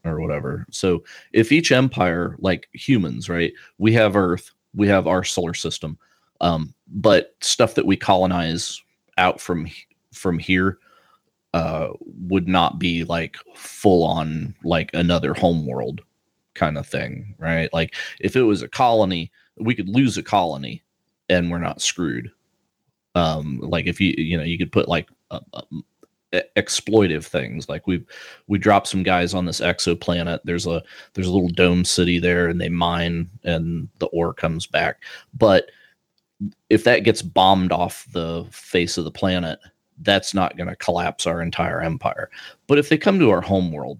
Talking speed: 165 wpm